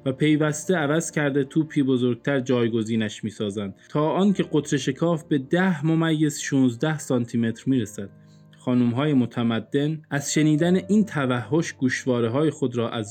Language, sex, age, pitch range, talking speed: Persian, male, 20-39, 120-150 Hz, 135 wpm